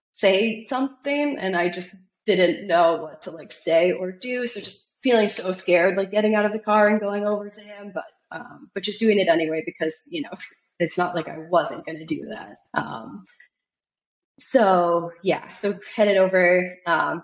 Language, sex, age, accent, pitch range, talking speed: English, female, 20-39, American, 170-210 Hz, 190 wpm